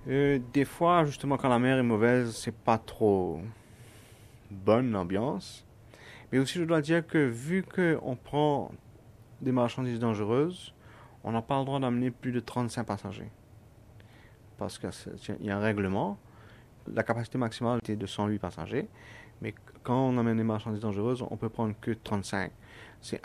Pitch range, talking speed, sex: 105-125 Hz, 165 wpm, male